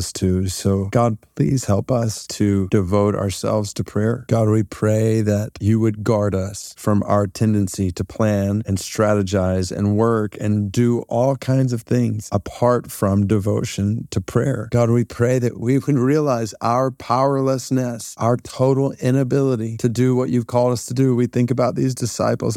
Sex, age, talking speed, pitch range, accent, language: male, 30-49, 170 wpm, 110-135 Hz, American, English